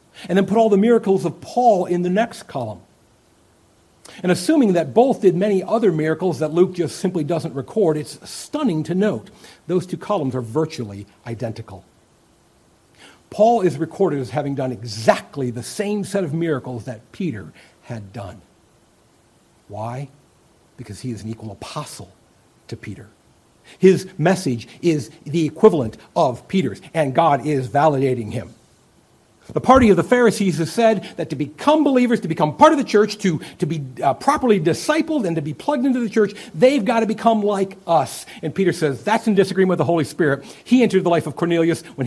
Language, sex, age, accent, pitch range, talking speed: English, male, 50-69, American, 135-205 Hz, 180 wpm